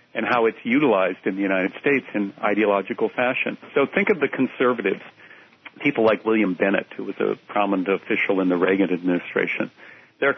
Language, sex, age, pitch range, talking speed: English, male, 50-69, 95-110 Hz, 175 wpm